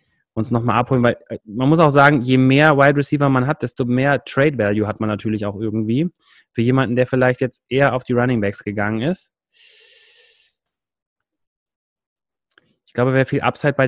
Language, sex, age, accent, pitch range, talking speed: German, male, 30-49, German, 115-155 Hz, 175 wpm